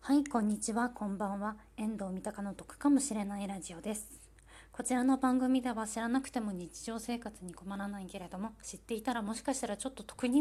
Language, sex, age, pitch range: Japanese, female, 20-39, 185-230 Hz